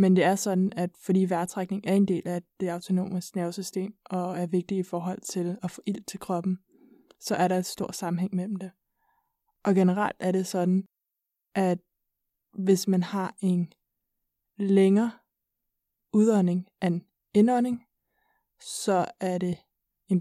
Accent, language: native, Danish